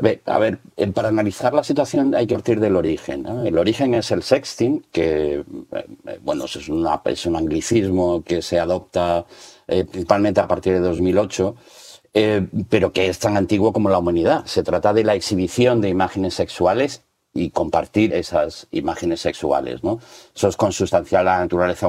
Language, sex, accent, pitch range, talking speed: Spanish, male, Spanish, 90-110 Hz, 175 wpm